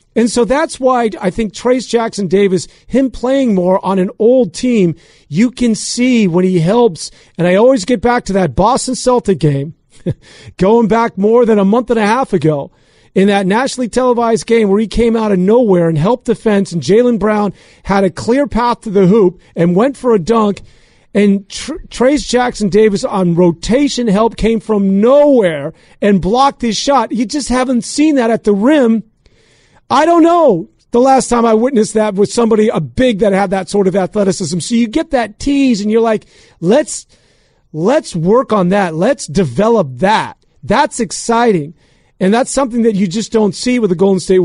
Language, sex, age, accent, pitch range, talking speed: English, male, 40-59, American, 190-245 Hz, 190 wpm